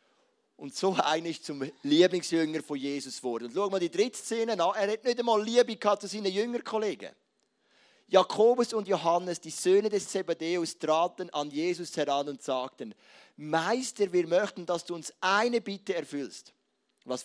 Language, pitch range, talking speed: German, 150-210 Hz, 160 wpm